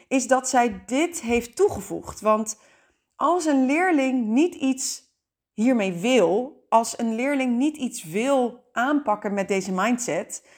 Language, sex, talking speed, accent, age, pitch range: Dutch, female, 135 wpm, Dutch, 30-49, 205-275 Hz